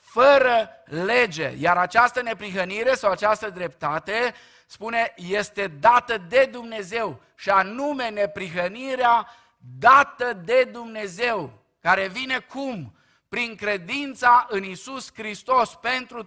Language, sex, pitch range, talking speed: Romanian, male, 180-245 Hz, 105 wpm